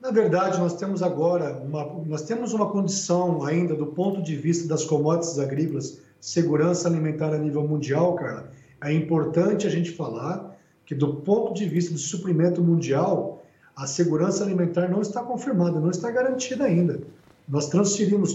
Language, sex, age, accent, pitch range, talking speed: Portuguese, male, 40-59, Brazilian, 165-205 Hz, 160 wpm